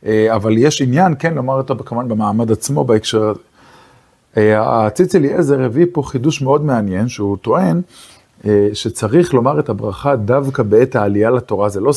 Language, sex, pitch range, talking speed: Hebrew, male, 115-150 Hz, 145 wpm